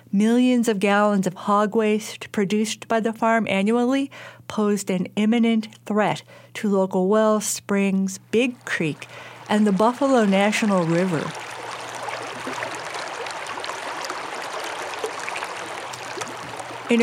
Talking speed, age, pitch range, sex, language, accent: 95 wpm, 50-69, 175-220 Hz, female, English, American